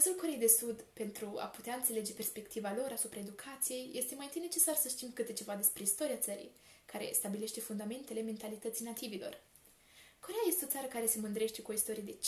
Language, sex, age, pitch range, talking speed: Romanian, female, 10-29, 220-265 Hz, 190 wpm